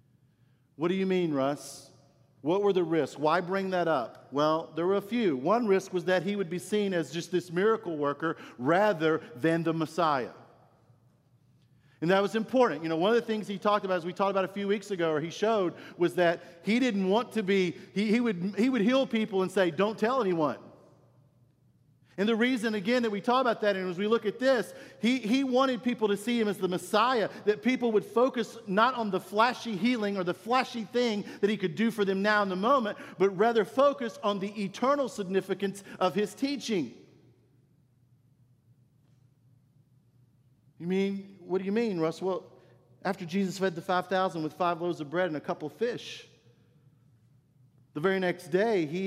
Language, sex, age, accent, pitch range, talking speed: English, male, 50-69, American, 150-210 Hz, 200 wpm